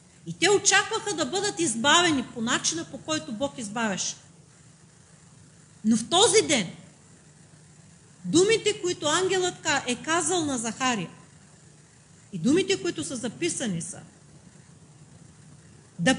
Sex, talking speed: female, 110 wpm